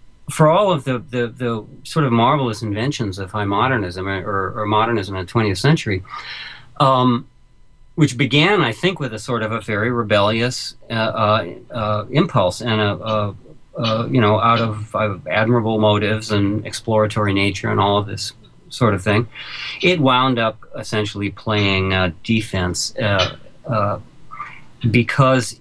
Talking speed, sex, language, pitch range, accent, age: 150 wpm, male, English, 105-140 Hz, American, 40-59